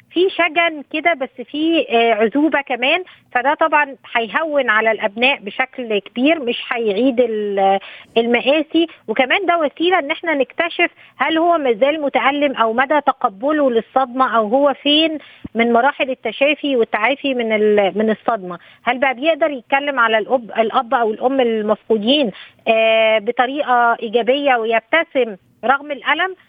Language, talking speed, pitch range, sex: Arabic, 125 wpm, 235-290 Hz, female